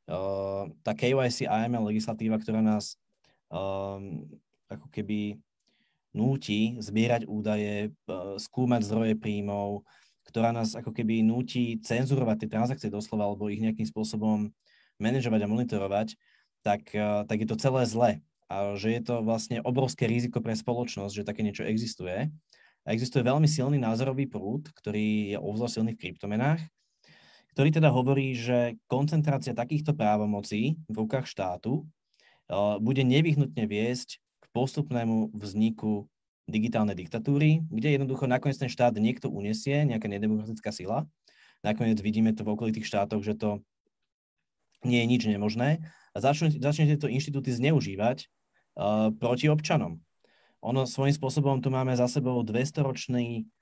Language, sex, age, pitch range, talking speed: Slovak, male, 20-39, 105-130 Hz, 135 wpm